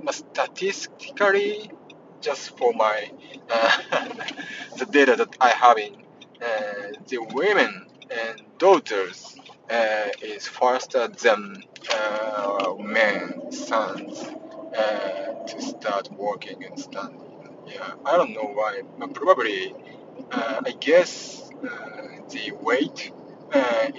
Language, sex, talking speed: English, male, 110 wpm